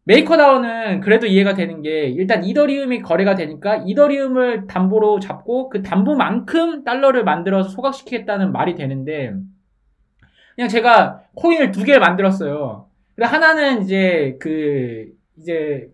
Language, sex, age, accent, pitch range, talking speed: English, male, 20-39, Korean, 180-260 Hz, 105 wpm